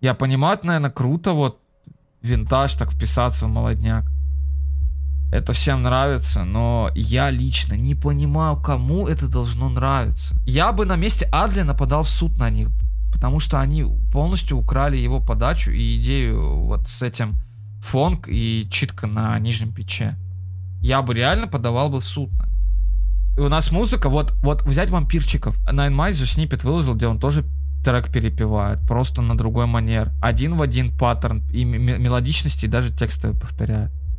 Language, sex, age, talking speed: Russian, male, 20-39, 160 wpm